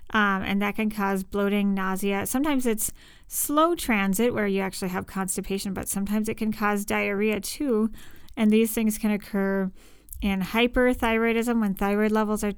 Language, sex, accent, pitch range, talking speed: English, female, American, 190-220 Hz, 160 wpm